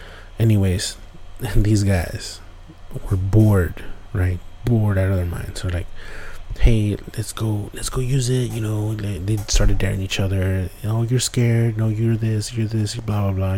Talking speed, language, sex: 180 wpm, English, male